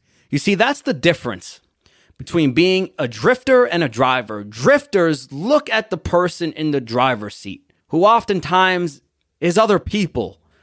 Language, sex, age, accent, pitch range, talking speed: English, male, 30-49, American, 130-195 Hz, 145 wpm